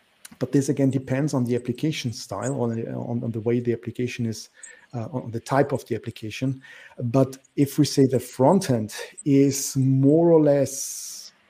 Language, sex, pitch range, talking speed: English, male, 120-140 Hz, 175 wpm